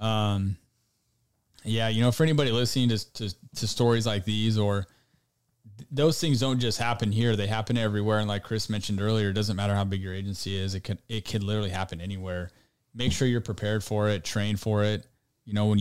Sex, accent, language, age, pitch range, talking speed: male, American, English, 20-39, 105-120 Hz, 215 wpm